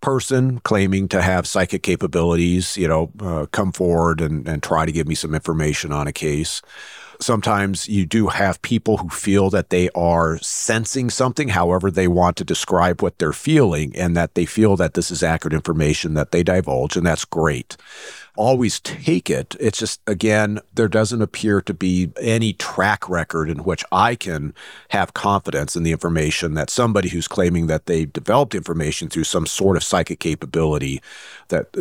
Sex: male